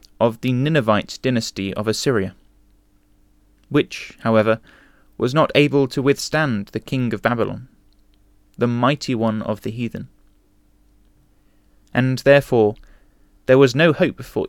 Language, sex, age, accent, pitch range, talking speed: English, male, 20-39, British, 100-130 Hz, 125 wpm